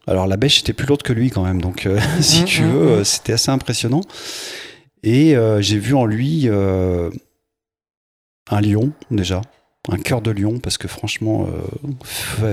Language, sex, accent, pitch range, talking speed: French, male, French, 95-130 Hz, 175 wpm